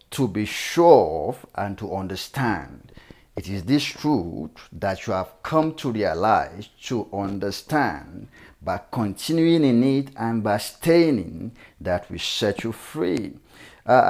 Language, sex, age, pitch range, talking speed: English, male, 50-69, 100-130 Hz, 135 wpm